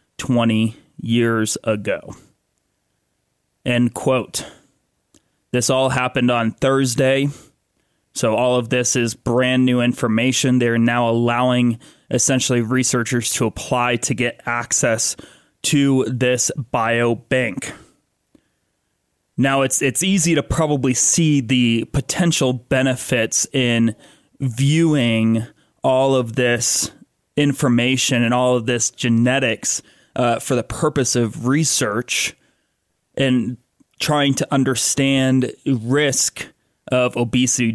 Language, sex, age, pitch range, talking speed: English, male, 30-49, 120-140 Hz, 105 wpm